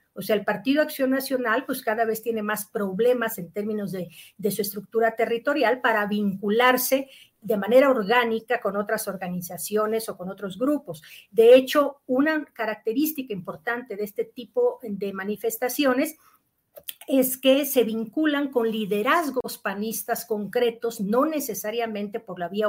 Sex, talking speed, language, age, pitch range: female, 145 wpm, Spanish, 50-69, 205-260 Hz